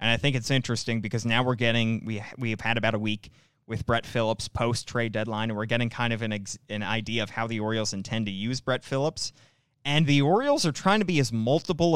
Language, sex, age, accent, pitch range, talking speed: English, male, 20-39, American, 115-150 Hz, 235 wpm